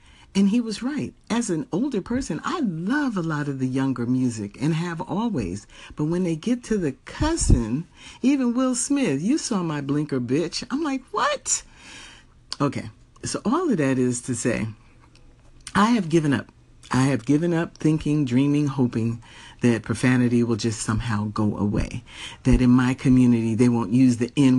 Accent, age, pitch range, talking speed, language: American, 50-69, 115-175 Hz, 175 wpm, English